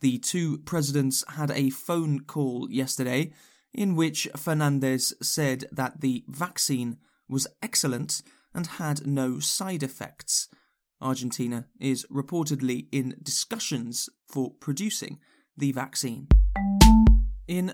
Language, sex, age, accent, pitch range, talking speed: English, male, 20-39, British, 130-160 Hz, 110 wpm